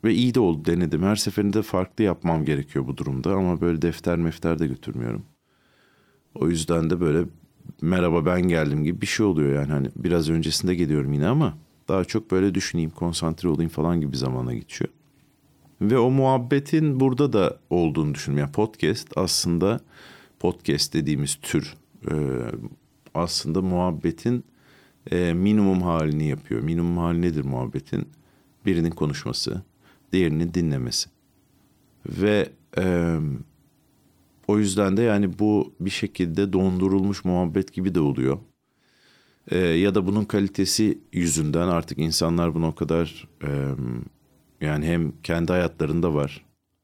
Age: 50-69